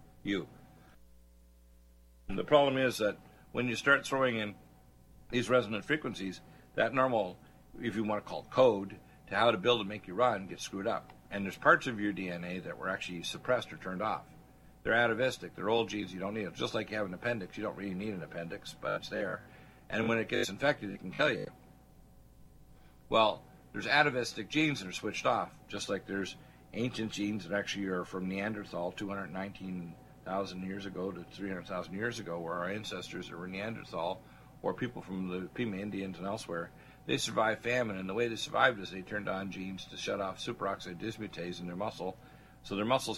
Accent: American